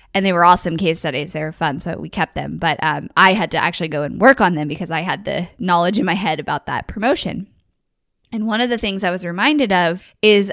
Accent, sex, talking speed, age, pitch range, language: American, female, 255 wpm, 10-29, 165-195 Hz, English